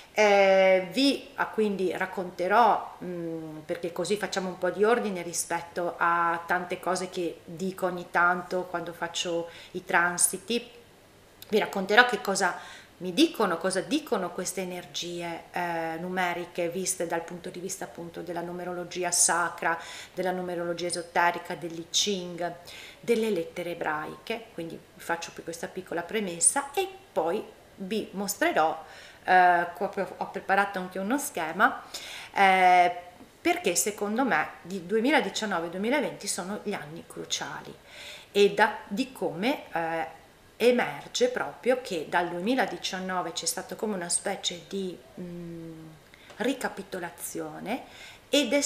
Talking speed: 120 wpm